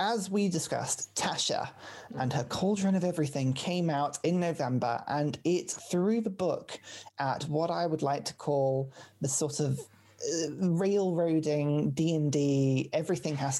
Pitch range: 135-180 Hz